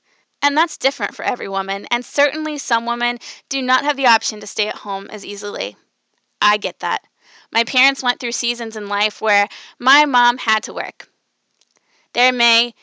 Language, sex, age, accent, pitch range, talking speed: English, female, 20-39, American, 215-260 Hz, 185 wpm